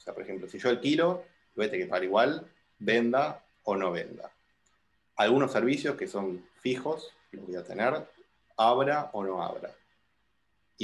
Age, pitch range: 30-49, 95-135 Hz